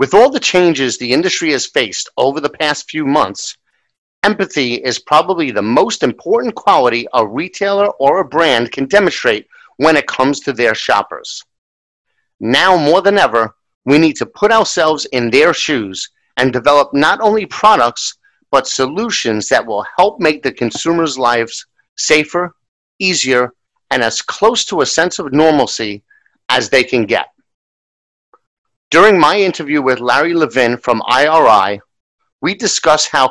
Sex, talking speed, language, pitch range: male, 150 wpm, English, 130-185 Hz